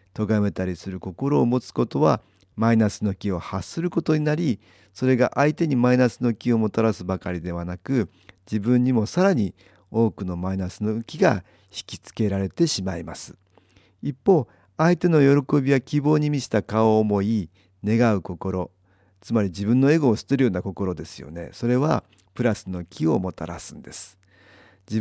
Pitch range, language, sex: 95-125 Hz, Japanese, male